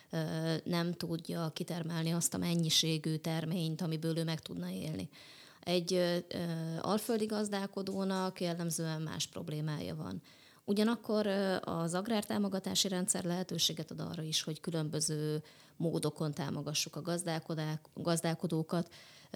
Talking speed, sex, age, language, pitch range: 105 wpm, female, 20-39, Hungarian, 155-180 Hz